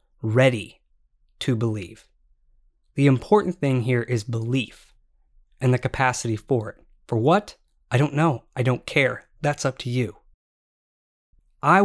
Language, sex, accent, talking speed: English, male, American, 135 wpm